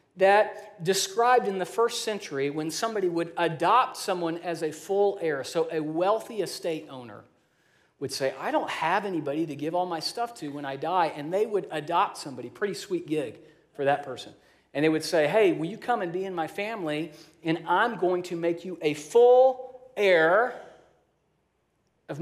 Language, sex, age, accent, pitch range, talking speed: English, male, 40-59, American, 160-215 Hz, 185 wpm